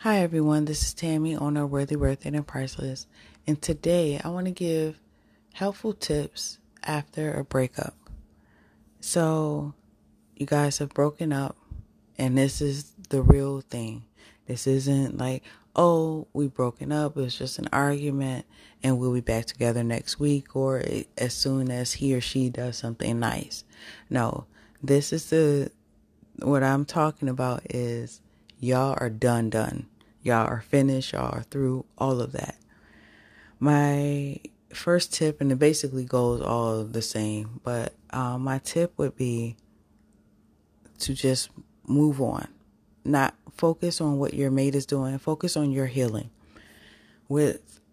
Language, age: English, 20-39